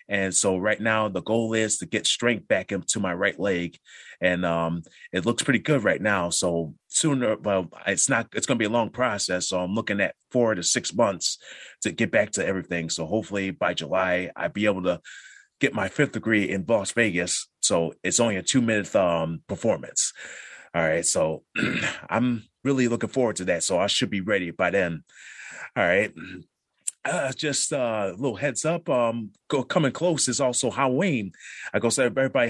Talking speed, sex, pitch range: 195 wpm, male, 100-130 Hz